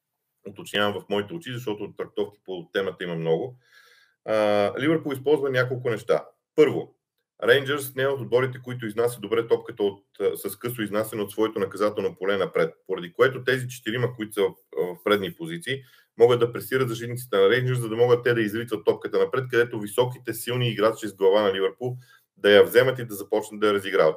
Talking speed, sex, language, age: 180 wpm, male, Bulgarian, 40-59